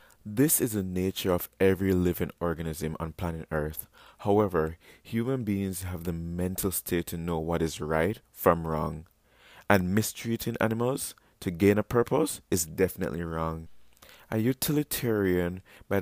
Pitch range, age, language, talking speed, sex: 85-105 Hz, 20-39, English, 140 wpm, male